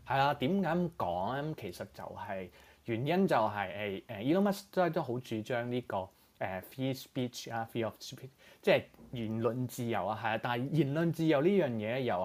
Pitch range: 100-135 Hz